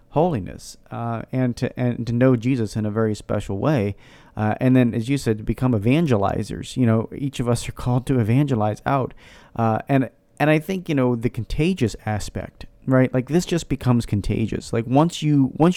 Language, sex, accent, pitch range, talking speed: English, male, American, 110-135 Hz, 200 wpm